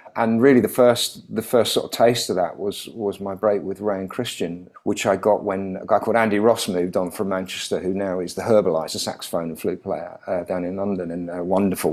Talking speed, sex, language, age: 240 wpm, male, French, 50-69